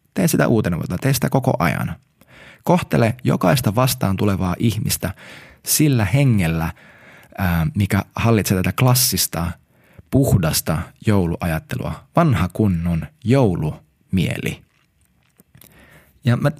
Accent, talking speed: native, 90 wpm